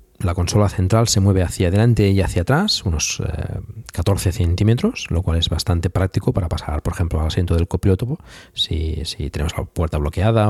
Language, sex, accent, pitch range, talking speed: Spanish, male, Spanish, 85-105 Hz, 190 wpm